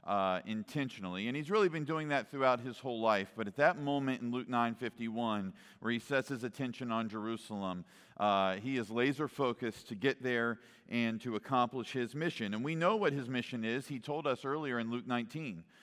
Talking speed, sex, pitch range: 200 wpm, male, 120-155 Hz